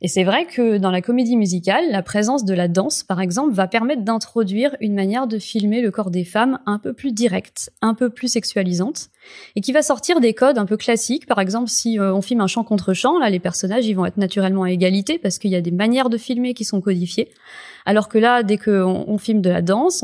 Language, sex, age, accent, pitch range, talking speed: French, female, 20-39, French, 190-235 Hz, 245 wpm